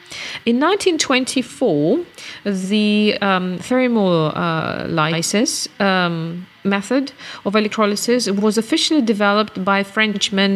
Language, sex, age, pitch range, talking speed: English, female, 40-59, 175-220 Hz, 80 wpm